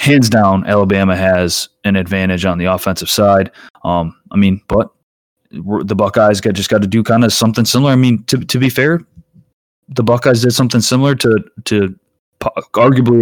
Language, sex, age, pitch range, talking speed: English, male, 20-39, 95-110 Hz, 175 wpm